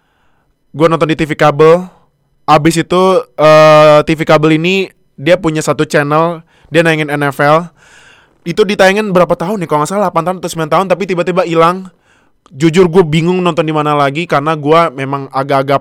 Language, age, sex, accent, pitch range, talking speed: Indonesian, 20-39, male, native, 140-180 Hz, 170 wpm